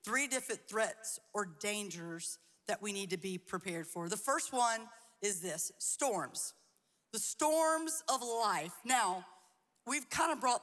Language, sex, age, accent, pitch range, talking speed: English, female, 40-59, American, 195-255 Hz, 145 wpm